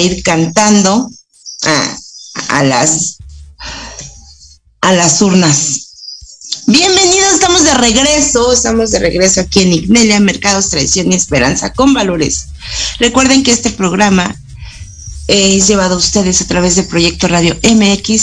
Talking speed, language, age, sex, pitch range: 130 wpm, Spanish, 40-59, female, 170-235 Hz